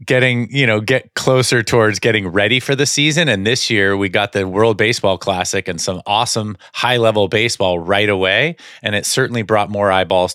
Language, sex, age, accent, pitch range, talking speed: English, male, 30-49, American, 95-125 Hz, 190 wpm